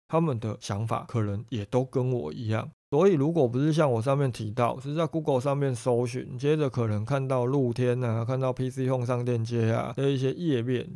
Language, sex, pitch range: Chinese, male, 115-145 Hz